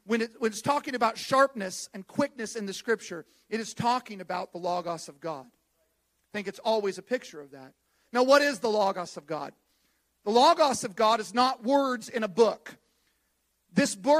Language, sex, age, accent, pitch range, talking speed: English, male, 40-59, American, 200-285 Hz, 190 wpm